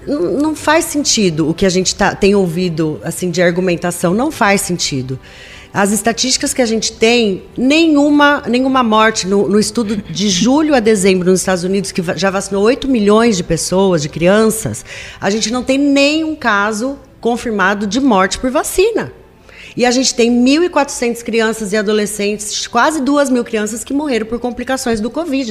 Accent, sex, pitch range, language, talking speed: Brazilian, female, 180-235 Hz, Portuguese, 165 wpm